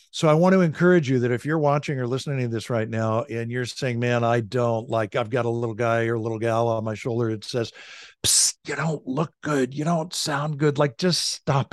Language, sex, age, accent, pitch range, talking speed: English, male, 60-79, American, 115-145 Hz, 245 wpm